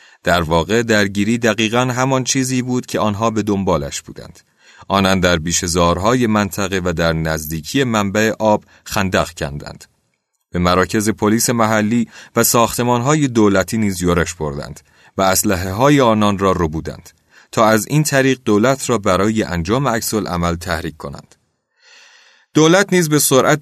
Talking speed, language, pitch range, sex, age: 140 wpm, Persian, 90-125 Hz, male, 30-49